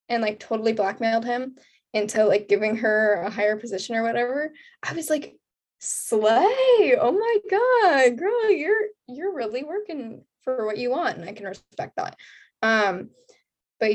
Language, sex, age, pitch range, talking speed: English, female, 10-29, 225-330 Hz, 160 wpm